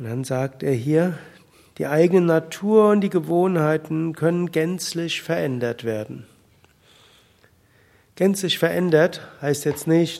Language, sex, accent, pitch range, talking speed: German, male, German, 125-160 Hz, 120 wpm